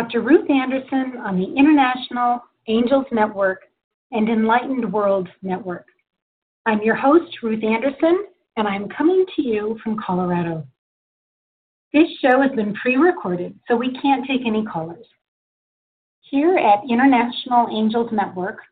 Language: English